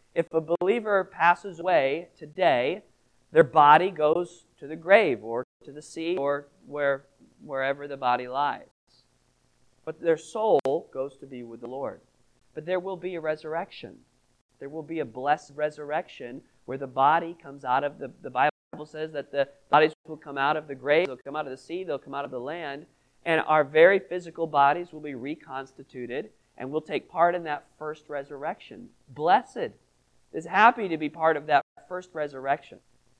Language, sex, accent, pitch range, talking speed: English, male, American, 135-175 Hz, 180 wpm